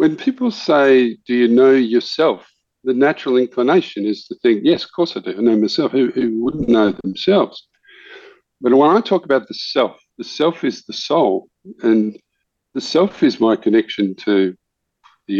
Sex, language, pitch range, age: male, English, 120-200 Hz, 50-69